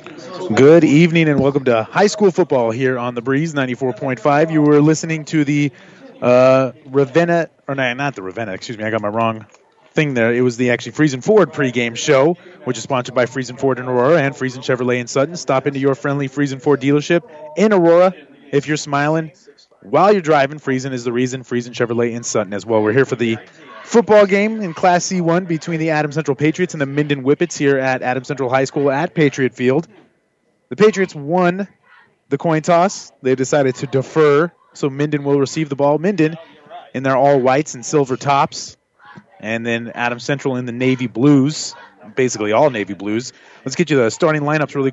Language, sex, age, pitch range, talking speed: English, male, 30-49, 125-155 Hz, 200 wpm